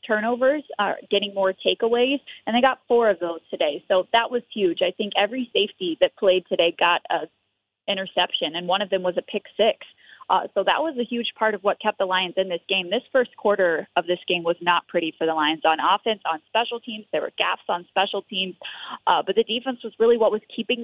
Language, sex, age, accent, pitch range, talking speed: English, female, 20-39, American, 180-225 Hz, 235 wpm